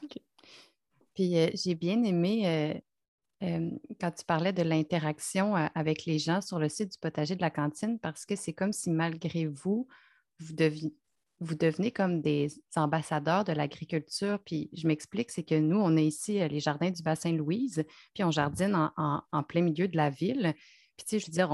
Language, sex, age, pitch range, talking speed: French, female, 30-49, 155-195 Hz, 205 wpm